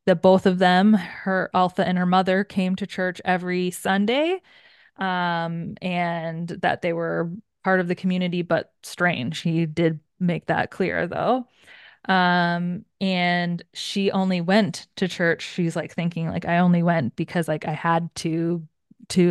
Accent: American